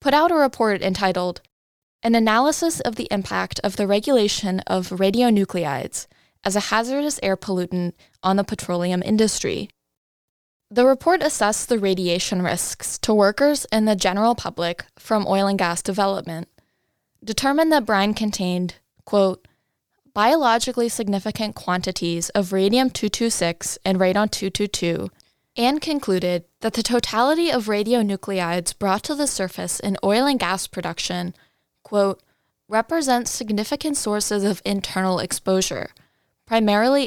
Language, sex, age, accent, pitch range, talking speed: English, female, 10-29, American, 185-240 Hz, 125 wpm